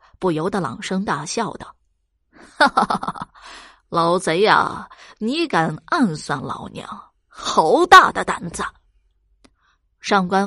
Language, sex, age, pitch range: Chinese, female, 20-39, 180-240 Hz